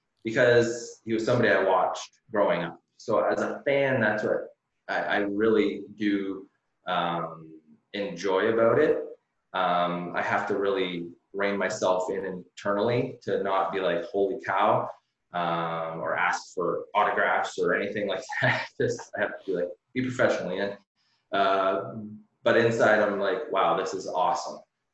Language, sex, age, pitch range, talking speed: English, male, 20-39, 90-110 Hz, 160 wpm